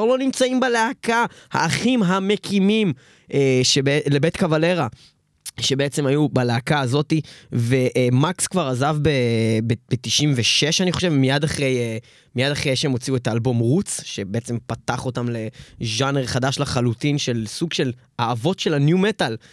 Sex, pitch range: male, 125-165 Hz